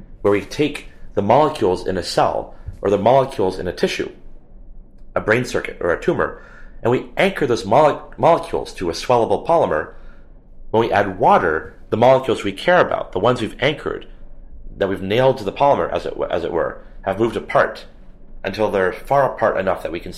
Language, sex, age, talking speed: English, male, 30-49, 185 wpm